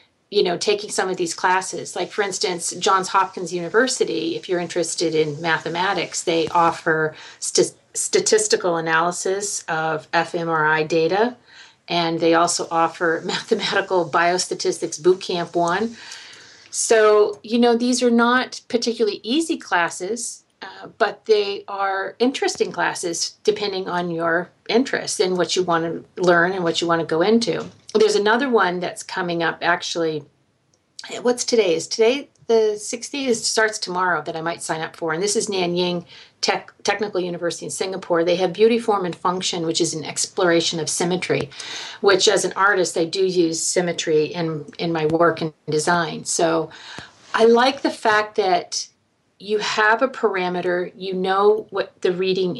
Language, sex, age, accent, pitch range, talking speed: English, female, 40-59, American, 170-225 Hz, 155 wpm